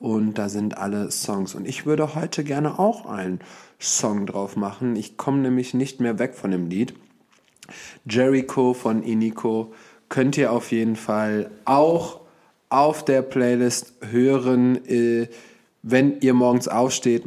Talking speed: 145 wpm